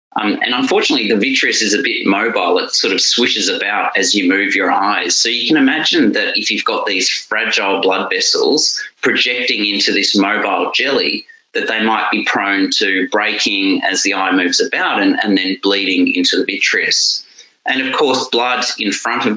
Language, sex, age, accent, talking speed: English, male, 30-49, Australian, 190 wpm